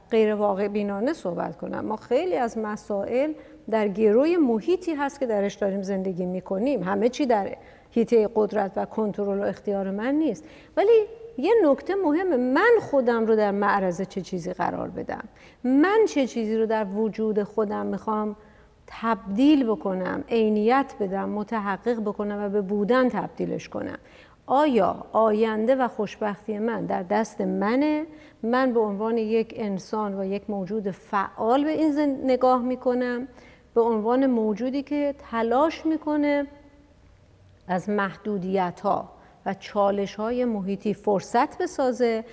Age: 50-69